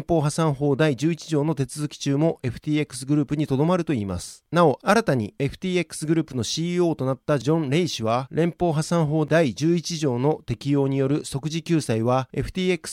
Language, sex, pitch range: Japanese, male, 140-175 Hz